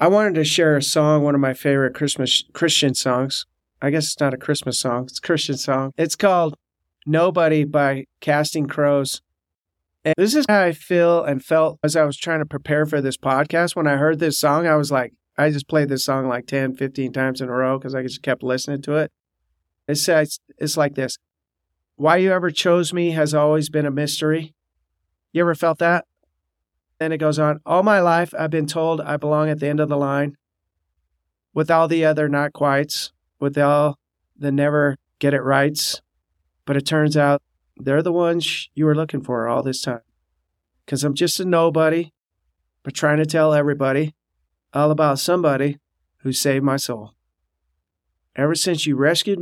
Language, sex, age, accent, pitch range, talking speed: English, male, 40-59, American, 130-155 Hz, 190 wpm